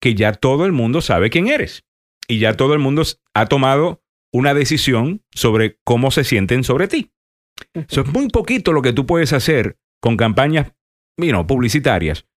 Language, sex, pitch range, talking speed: Spanish, male, 105-150 Hz, 170 wpm